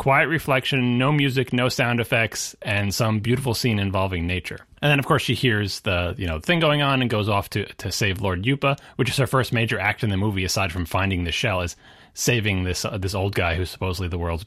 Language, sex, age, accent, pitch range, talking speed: English, male, 30-49, American, 100-135 Hz, 240 wpm